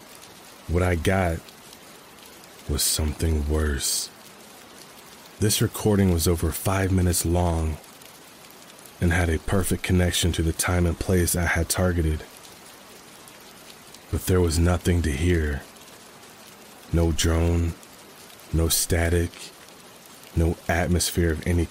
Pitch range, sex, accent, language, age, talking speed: 80-90 Hz, male, American, English, 30-49, 110 wpm